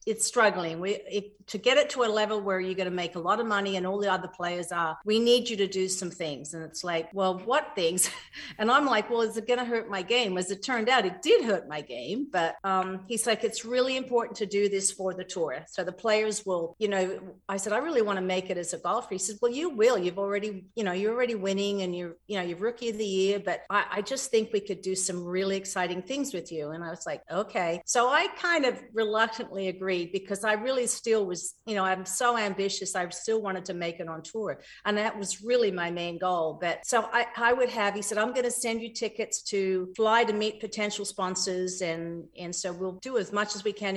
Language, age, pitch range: English, 50-69, 180-220 Hz